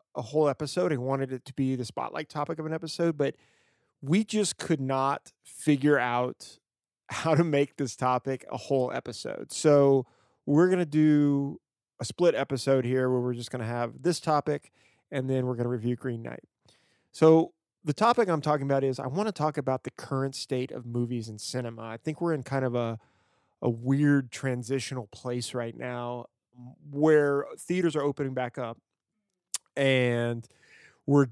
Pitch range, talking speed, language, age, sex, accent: 120-145 Hz, 180 wpm, English, 30-49, male, American